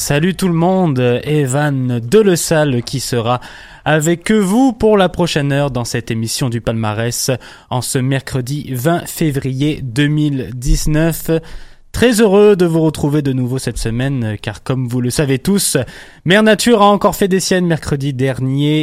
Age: 20-39